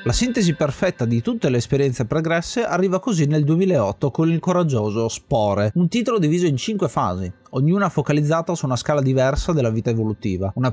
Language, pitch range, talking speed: Italian, 120-170 Hz, 180 wpm